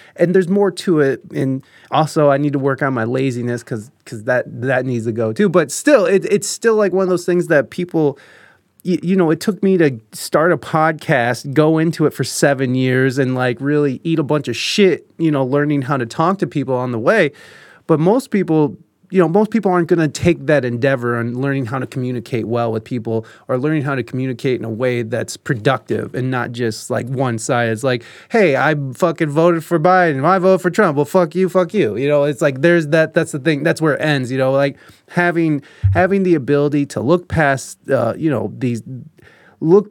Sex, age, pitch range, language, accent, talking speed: male, 20-39, 130-175 Hz, English, American, 230 wpm